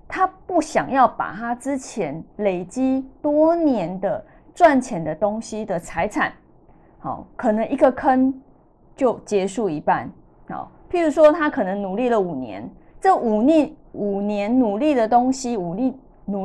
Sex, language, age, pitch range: female, Chinese, 20-39, 200-270 Hz